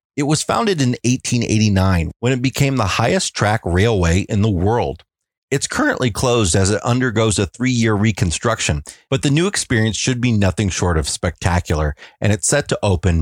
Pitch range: 90-120 Hz